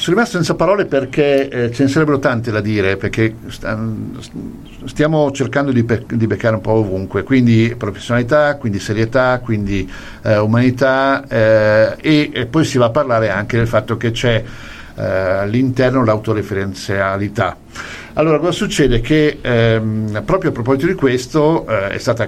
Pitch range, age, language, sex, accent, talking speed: 110-135 Hz, 50-69, Italian, male, native, 160 wpm